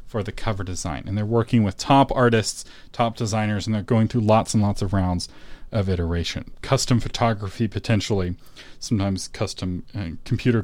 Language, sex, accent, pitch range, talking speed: English, male, American, 105-145 Hz, 170 wpm